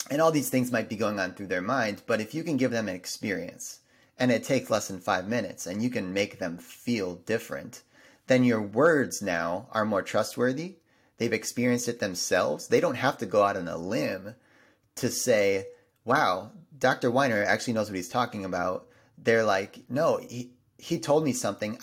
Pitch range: 105-130 Hz